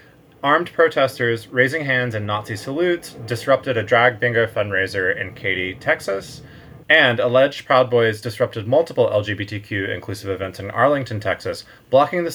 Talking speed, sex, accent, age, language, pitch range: 140 wpm, male, American, 20-39, English, 105-135 Hz